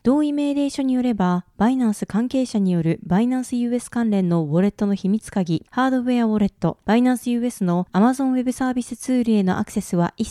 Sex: female